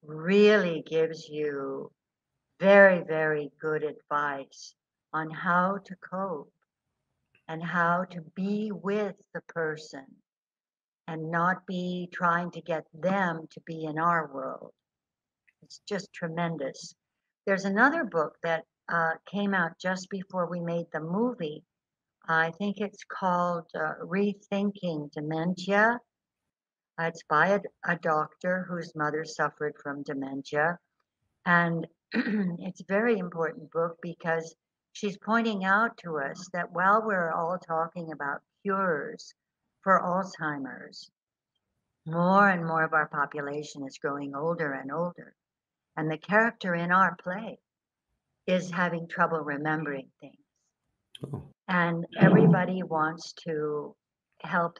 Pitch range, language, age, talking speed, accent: 155-190 Hz, English, 60-79, 120 wpm, American